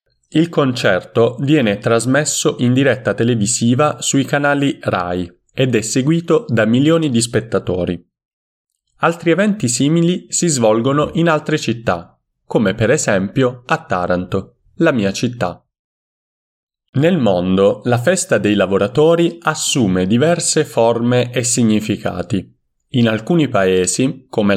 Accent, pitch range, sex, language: native, 100-150 Hz, male, Italian